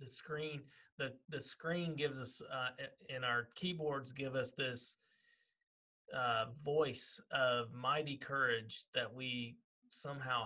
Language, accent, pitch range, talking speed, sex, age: English, American, 125-160 Hz, 125 wpm, male, 30-49